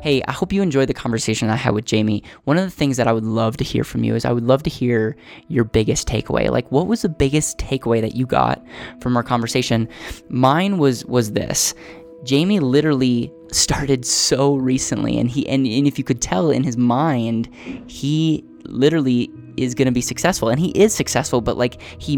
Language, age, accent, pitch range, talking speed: English, 10-29, American, 110-135 Hz, 210 wpm